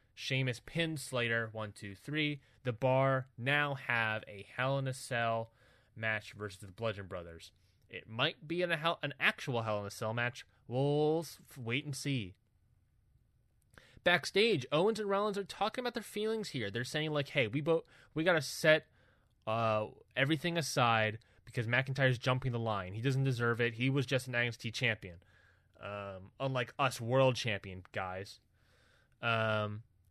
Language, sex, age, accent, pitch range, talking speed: English, male, 20-39, American, 110-155 Hz, 155 wpm